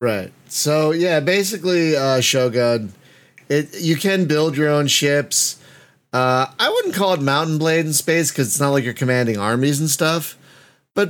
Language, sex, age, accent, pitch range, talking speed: English, male, 30-49, American, 120-155 Hz, 175 wpm